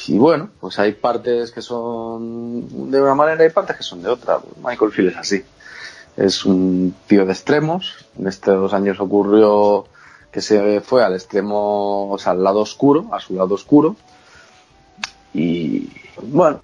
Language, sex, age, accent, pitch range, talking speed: Spanish, male, 30-49, Spanish, 95-120 Hz, 170 wpm